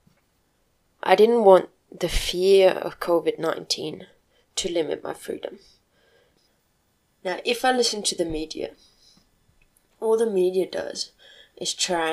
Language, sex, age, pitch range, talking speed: English, female, 20-39, 170-195 Hz, 120 wpm